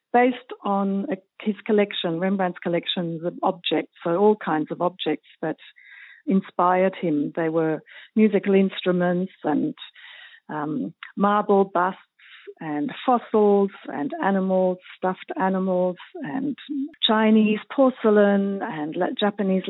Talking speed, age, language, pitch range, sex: 105 wpm, 50-69, Dutch, 170-205 Hz, female